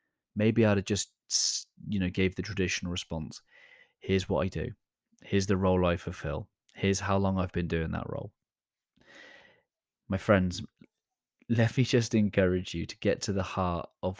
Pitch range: 90-105 Hz